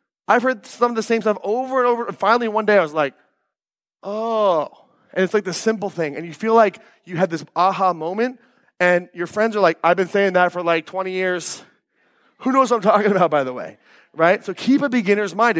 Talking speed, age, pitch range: 235 wpm, 30-49, 180-250 Hz